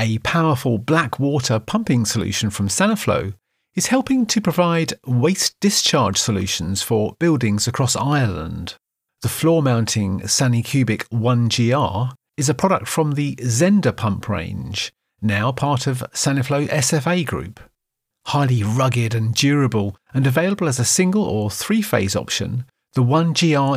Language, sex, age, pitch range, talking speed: English, male, 40-59, 110-150 Hz, 135 wpm